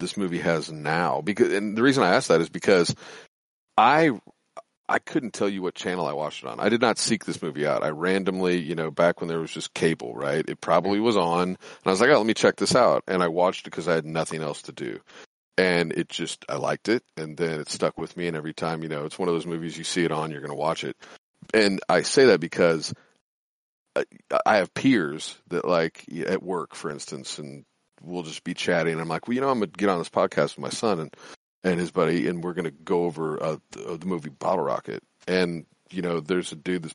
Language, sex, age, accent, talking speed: English, male, 40-59, American, 255 wpm